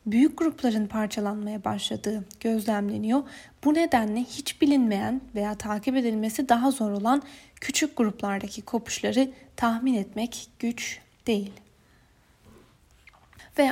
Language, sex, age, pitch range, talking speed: Turkish, female, 10-29, 215-270 Hz, 100 wpm